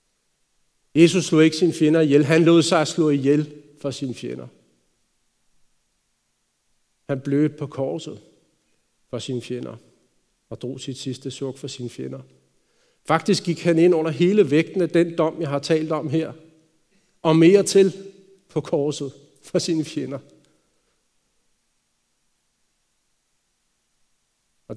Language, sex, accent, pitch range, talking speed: Danish, male, native, 130-160 Hz, 130 wpm